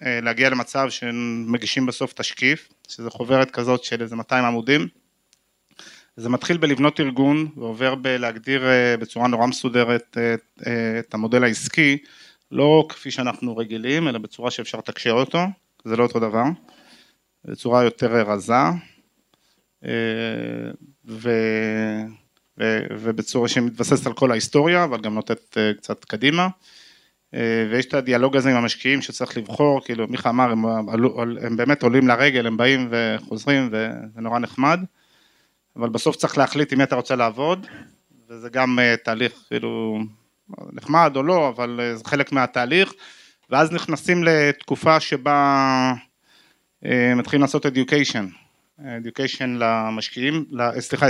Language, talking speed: Hebrew, 125 wpm